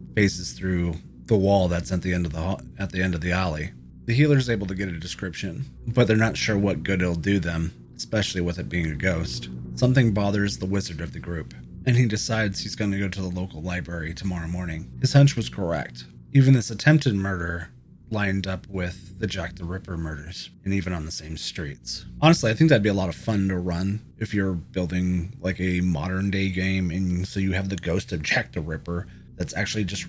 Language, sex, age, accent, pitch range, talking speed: English, male, 30-49, American, 90-120 Hz, 225 wpm